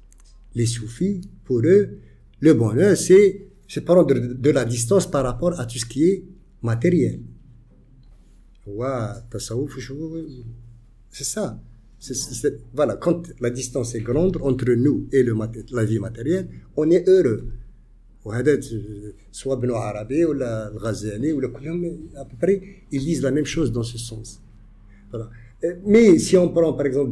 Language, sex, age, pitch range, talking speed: English, male, 50-69, 115-155 Hz, 155 wpm